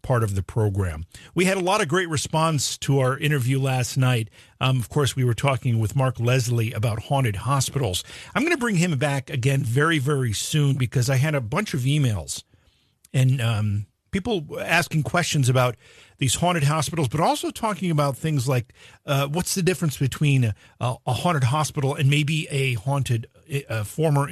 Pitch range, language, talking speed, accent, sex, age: 115-150 Hz, English, 185 wpm, American, male, 50-69